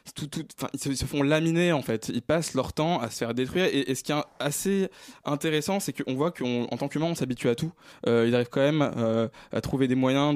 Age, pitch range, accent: 20-39, 120-150 Hz, French